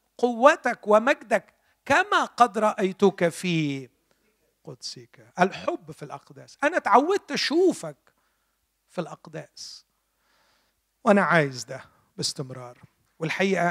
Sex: male